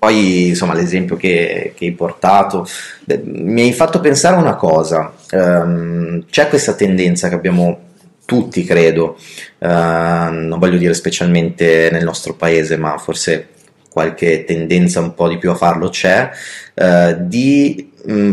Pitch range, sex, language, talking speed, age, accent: 85-100 Hz, male, Italian, 140 wpm, 30-49, native